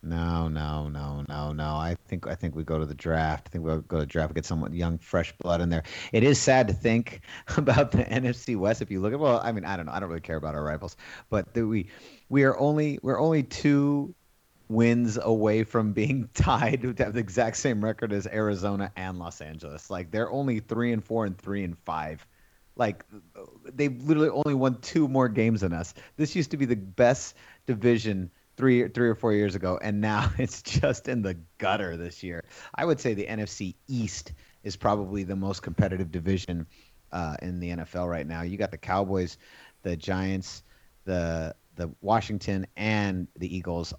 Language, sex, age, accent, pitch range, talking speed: English, male, 30-49, American, 85-125 Hz, 210 wpm